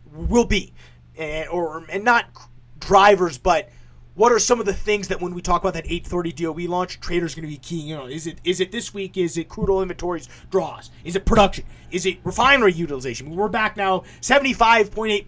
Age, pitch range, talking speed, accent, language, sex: 30-49, 135-185 Hz, 220 wpm, American, English, male